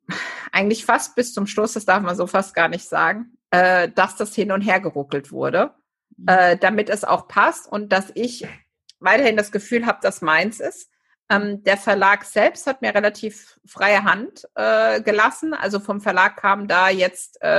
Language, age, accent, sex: German, 50-69, German, female